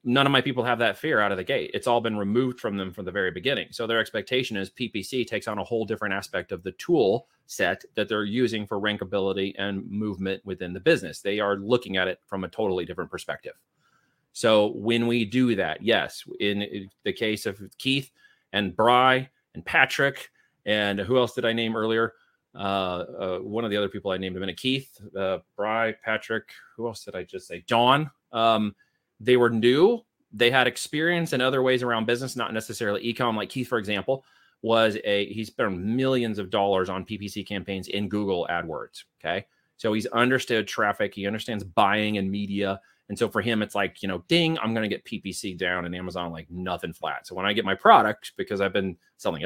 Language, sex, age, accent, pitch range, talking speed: English, male, 30-49, American, 100-120 Hz, 210 wpm